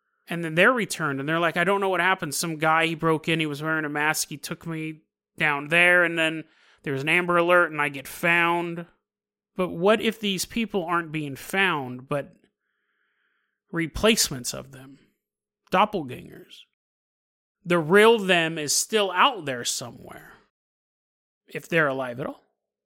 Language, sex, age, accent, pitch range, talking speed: English, male, 30-49, American, 155-195 Hz, 170 wpm